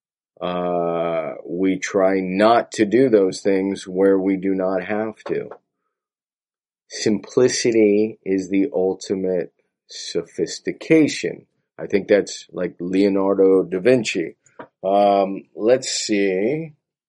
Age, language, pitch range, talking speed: 40-59, English, 95-115 Hz, 100 wpm